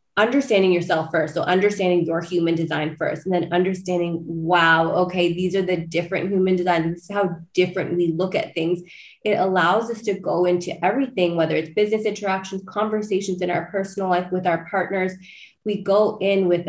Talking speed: 185 wpm